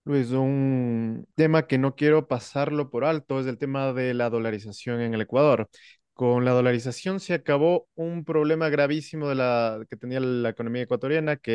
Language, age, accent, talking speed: English, 30-49, Mexican, 165 wpm